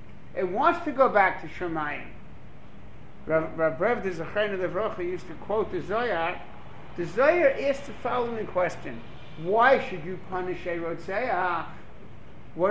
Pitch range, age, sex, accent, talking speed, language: 170-245 Hz, 60-79, male, American, 140 wpm, English